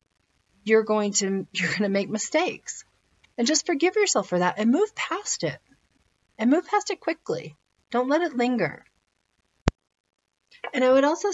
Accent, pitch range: American, 170-215 Hz